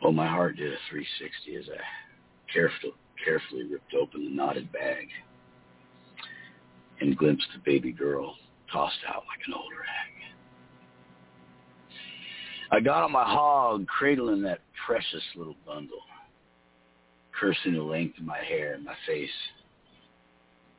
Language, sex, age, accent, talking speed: English, male, 60-79, American, 130 wpm